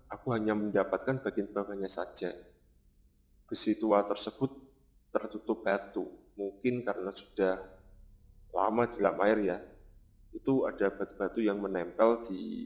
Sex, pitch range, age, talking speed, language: male, 70-110 Hz, 30-49, 110 wpm, Indonesian